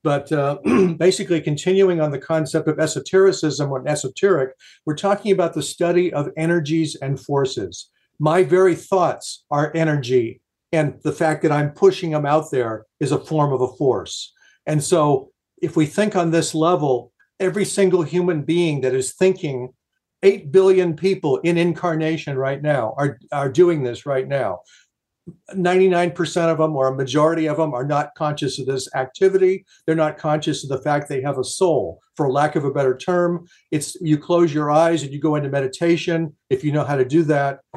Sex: male